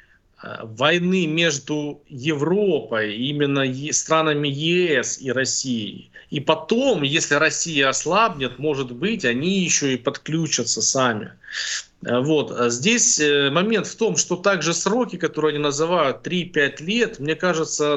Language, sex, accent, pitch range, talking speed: Russian, male, native, 135-175 Hz, 115 wpm